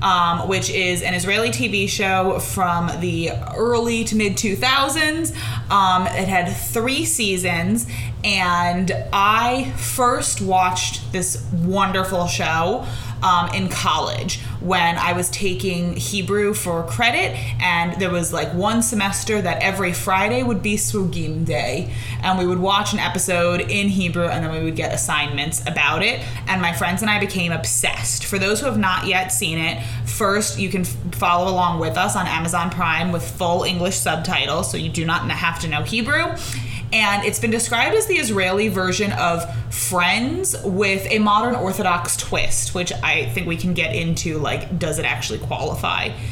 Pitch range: 120-190 Hz